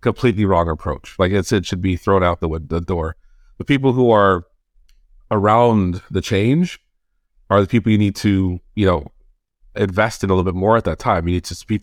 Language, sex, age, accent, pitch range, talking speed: English, male, 30-49, American, 90-110 Hz, 215 wpm